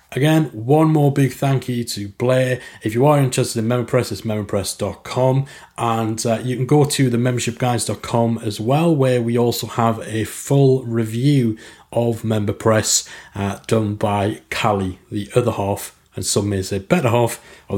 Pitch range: 120-150 Hz